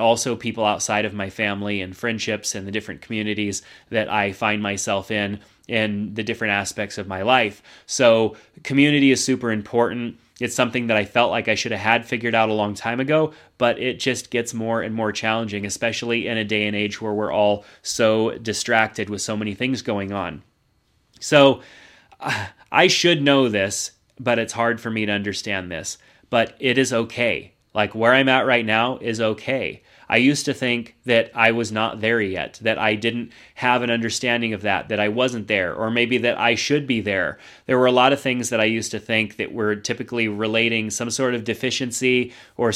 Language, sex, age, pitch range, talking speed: English, male, 30-49, 105-125 Hz, 200 wpm